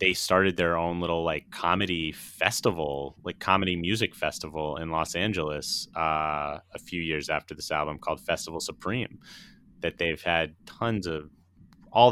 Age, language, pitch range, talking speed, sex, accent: 30-49, English, 80-95 Hz, 155 wpm, male, American